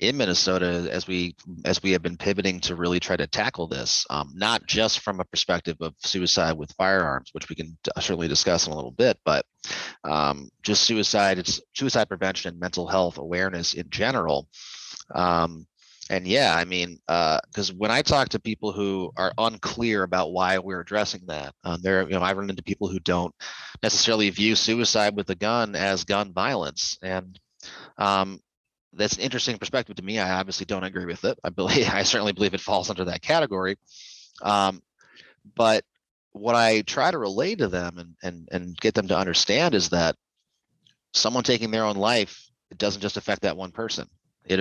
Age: 30-49